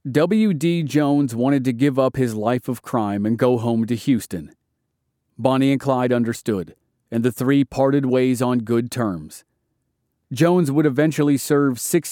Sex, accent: male, American